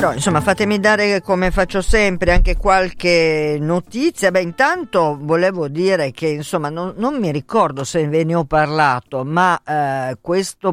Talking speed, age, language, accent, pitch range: 155 wpm, 50-69, Italian, native, 145-185 Hz